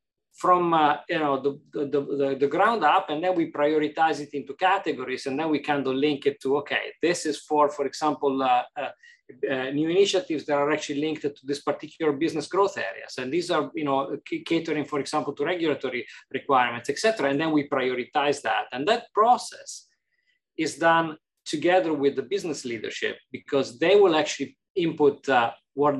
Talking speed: 190 wpm